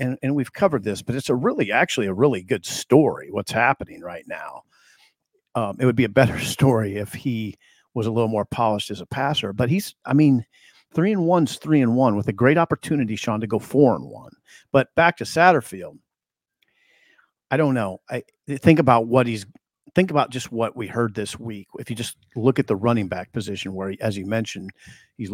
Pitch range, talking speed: 110-145 Hz, 215 wpm